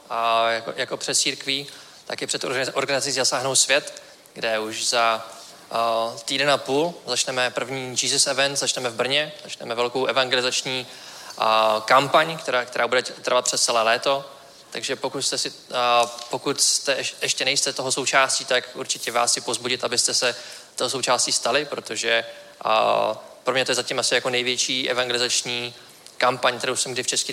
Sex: male